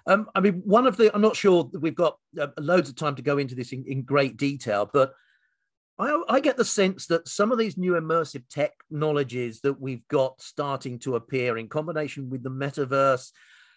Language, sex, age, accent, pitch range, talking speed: English, male, 40-59, British, 135-185 Hz, 210 wpm